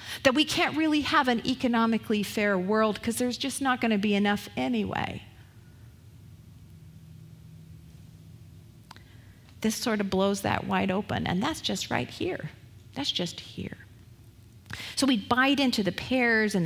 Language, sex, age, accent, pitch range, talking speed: English, female, 40-59, American, 145-245 Hz, 145 wpm